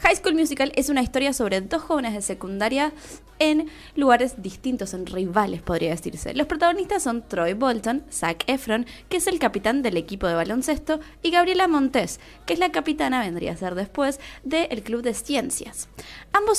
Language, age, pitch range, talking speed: Spanish, 20-39, 200-300 Hz, 180 wpm